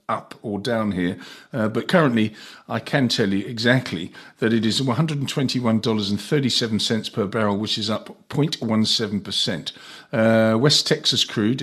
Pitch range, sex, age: 105-130 Hz, male, 50-69